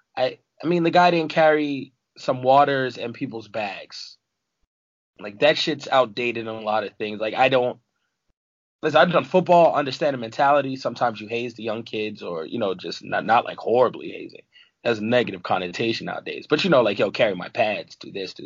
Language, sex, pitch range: English, male, 115-155 Hz